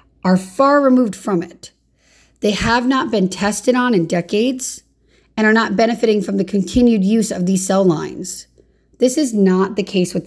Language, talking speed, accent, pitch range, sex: English, 180 wpm, American, 180-220 Hz, female